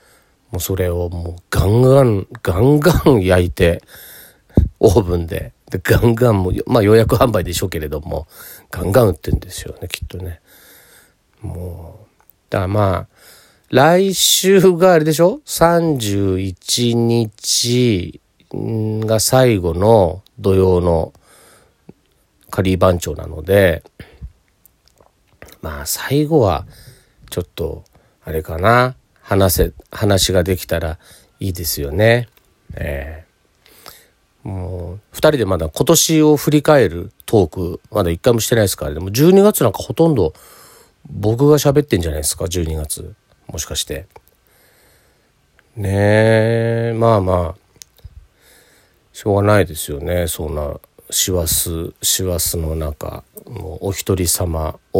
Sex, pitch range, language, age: male, 85-120 Hz, Japanese, 40-59